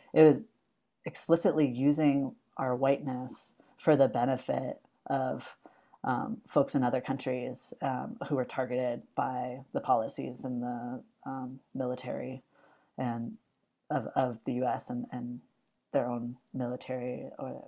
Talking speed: 125 wpm